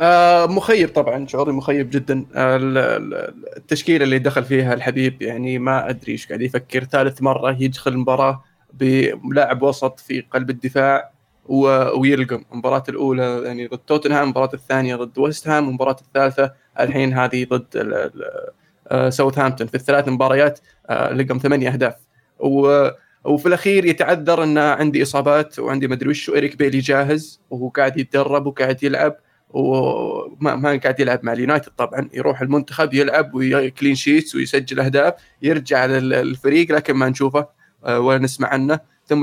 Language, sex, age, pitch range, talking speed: Arabic, male, 20-39, 130-150 Hz, 135 wpm